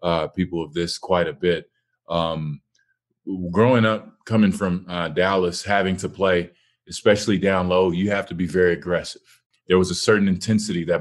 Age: 30-49